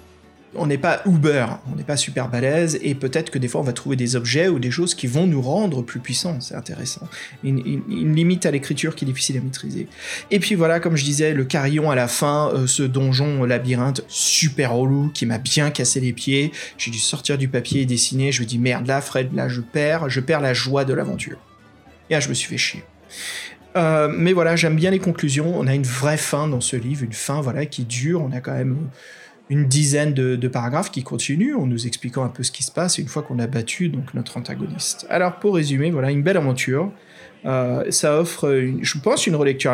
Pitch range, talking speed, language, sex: 130-165 Hz, 230 wpm, French, male